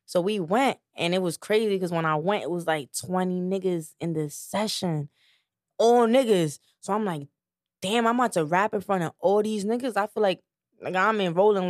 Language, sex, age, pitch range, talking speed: English, female, 20-39, 165-195 Hz, 215 wpm